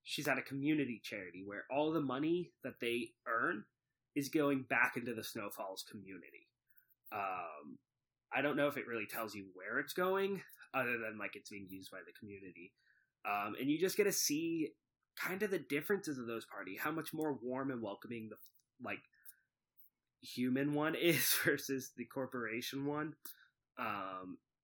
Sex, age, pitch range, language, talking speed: male, 20-39, 115-155 Hz, English, 170 wpm